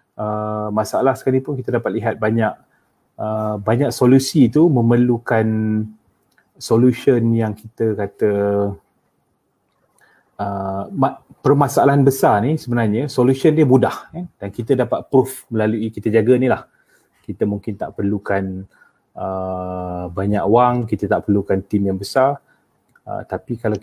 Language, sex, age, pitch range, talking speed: Malay, male, 30-49, 100-120 Hz, 125 wpm